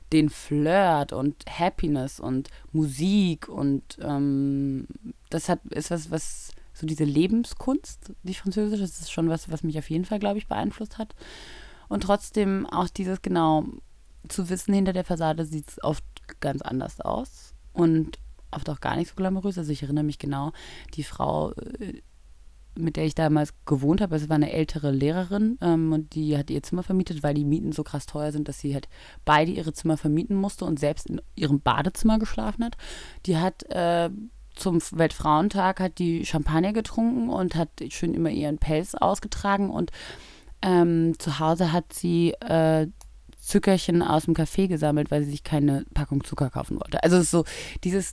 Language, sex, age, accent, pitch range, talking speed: German, female, 20-39, German, 150-190 Hz, 175 wpm